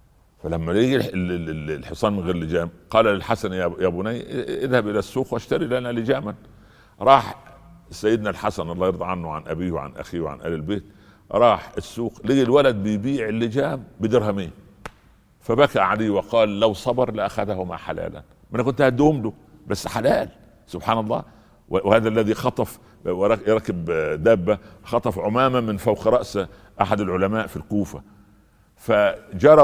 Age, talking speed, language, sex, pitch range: 60-79, 135 wpm, Arabic, male, 95-120 Hz